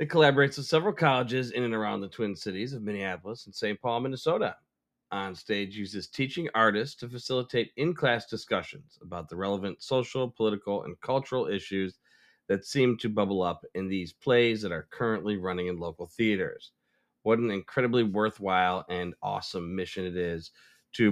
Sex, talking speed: male, 165 wpm